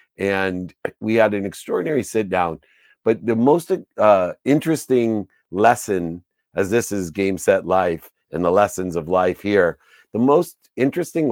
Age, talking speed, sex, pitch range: 50-69, 150 wpm, male, 90-120 Hz